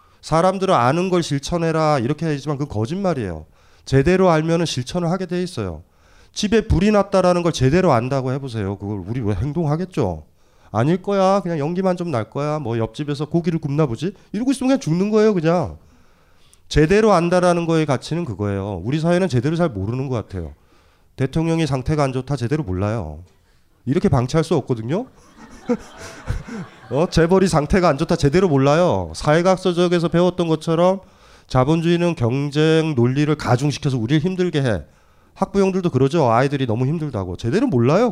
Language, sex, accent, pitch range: Korean, male, native, 115-180 Hz